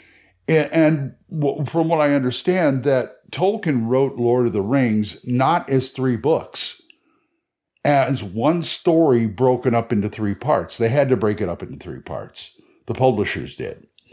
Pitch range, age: 115-155 Hz, 50-69